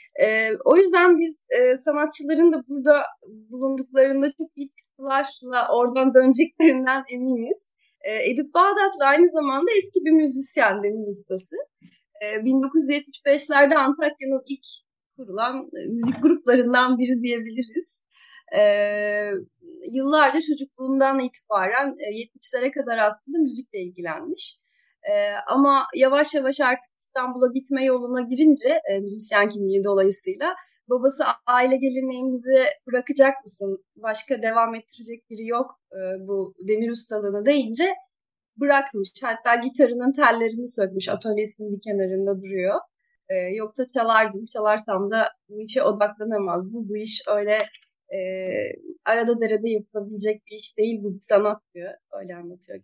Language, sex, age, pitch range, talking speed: Turkish, female, 30-49, 215-290 Hz, 115 wpm